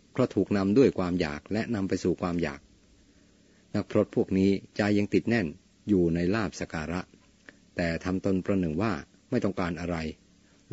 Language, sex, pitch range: Thai, male, 90-100 Hz